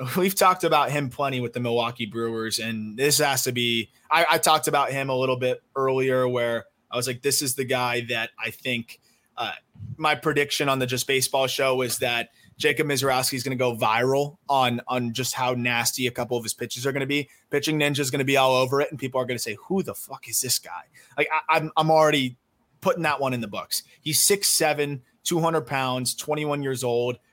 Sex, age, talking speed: male, 20-39, 230 wpm